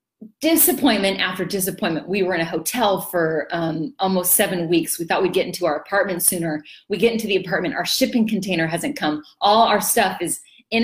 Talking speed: 200 wpm